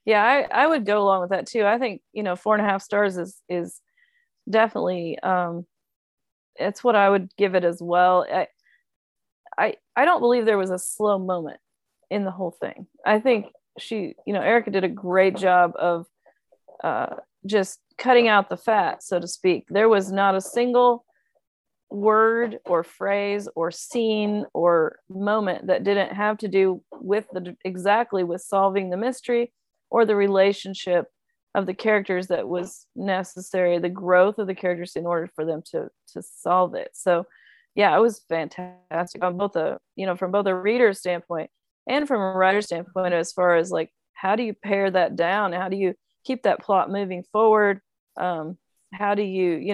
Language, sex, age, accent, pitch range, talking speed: English, female, 30-49, American, 180-215 Hz, 185 wpm